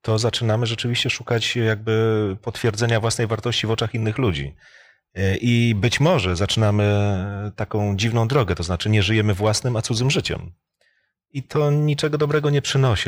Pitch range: 100-135 Hz